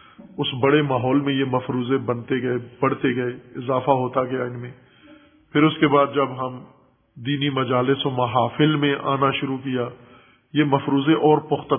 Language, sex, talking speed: Urdu, male, 170 wpm